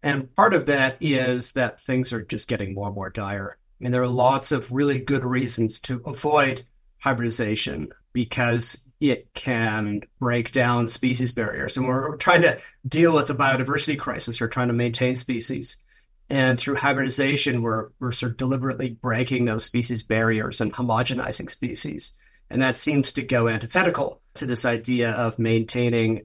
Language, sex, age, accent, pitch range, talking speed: English, male, 40-59, American, 115-135 Hz, 165 wpm